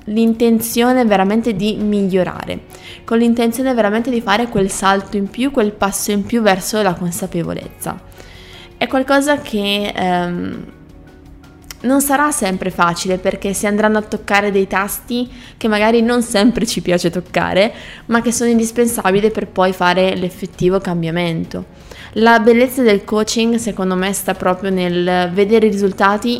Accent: native